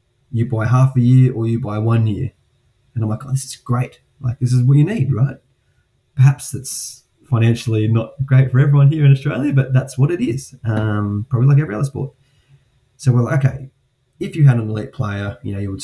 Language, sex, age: English, male, 20-39